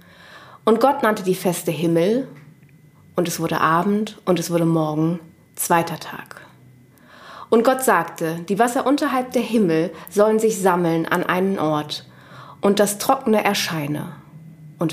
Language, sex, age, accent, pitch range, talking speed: German, female, 30-49, German, 160-220 Hz, 140 wpm